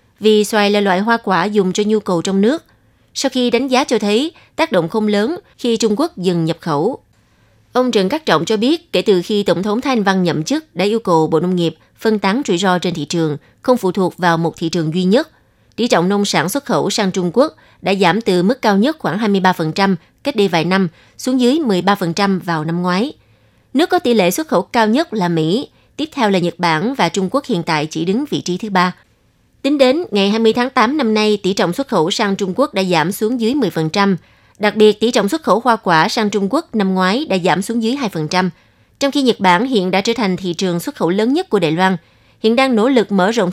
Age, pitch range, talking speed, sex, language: 20-39, 180-235 Hz, 245 wpm, female, Vietnamese